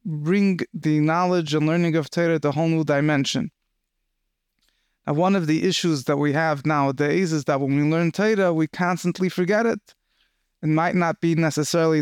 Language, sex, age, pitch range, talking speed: English, male, 20-39, 150-175 Hz, 180 wpm